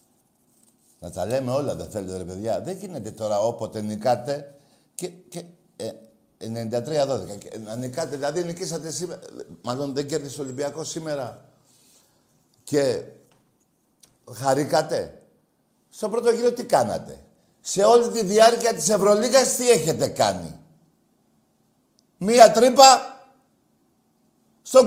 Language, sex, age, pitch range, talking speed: Greek, male, 60-79, 125-190 Hz, 115 wpm